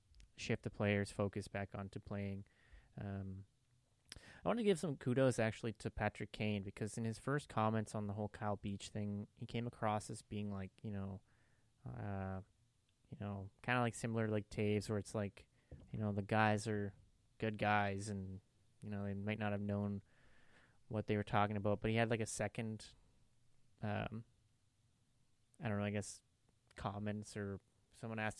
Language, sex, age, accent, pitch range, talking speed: English, male, 20-39, American, 100-115 Hz, 180 wpm